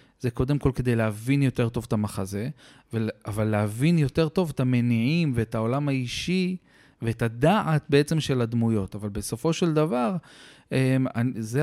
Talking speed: 145 wpm